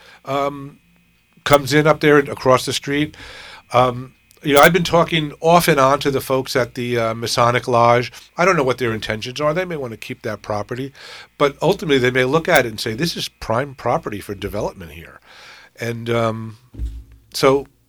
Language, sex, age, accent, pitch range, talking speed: English, male, 50-69, American, 110-145 Hz, 195 wpm